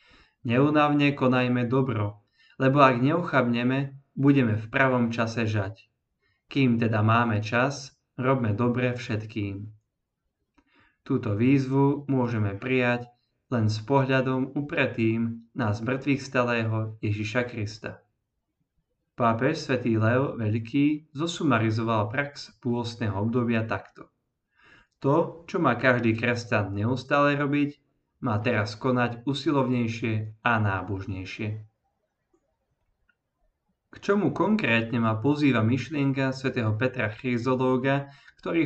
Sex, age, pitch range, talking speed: male, 20-39, 110-135 Hz, 100 wpm